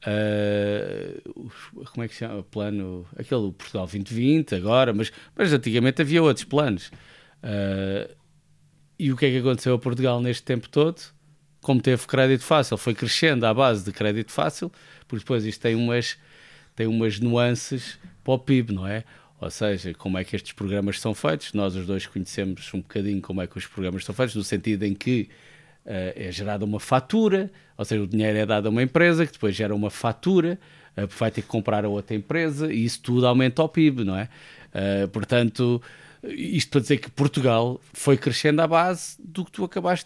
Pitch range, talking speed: 105-150 Hz, 185 wpm